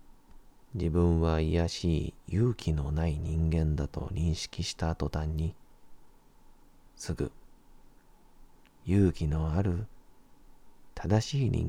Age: 40-59